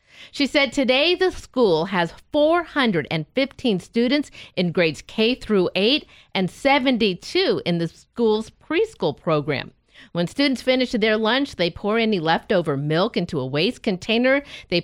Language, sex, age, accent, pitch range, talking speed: English, female, 50-69, American, 175-245 Hz, 140 wpm